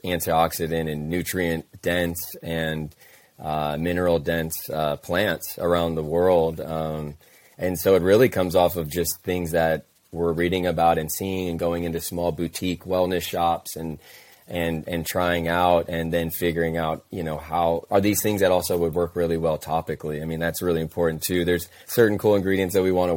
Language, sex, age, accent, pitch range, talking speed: English, male, 20-39, American, 80-90 Hz, 185 wpm